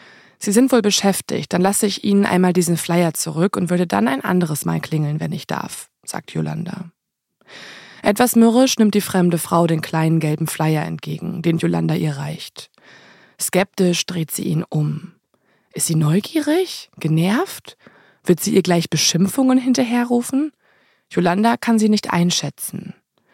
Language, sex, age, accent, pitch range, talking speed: German, female, 20-39, German, 165-215 Hz, 150 wpm